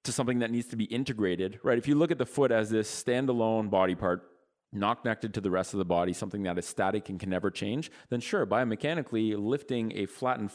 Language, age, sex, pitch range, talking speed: English, 30-49, male, 100-125 Hz, 235 wpm